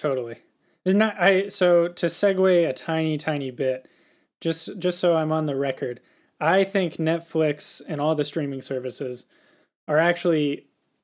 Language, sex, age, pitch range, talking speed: English, male, 10-29, 140-170 Hz, 150 wpm